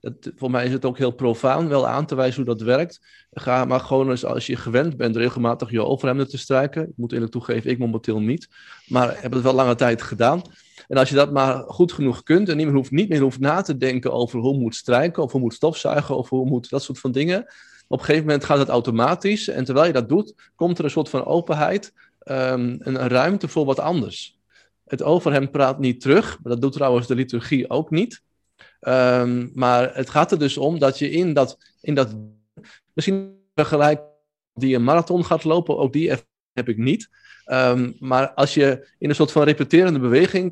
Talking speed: 215 wpm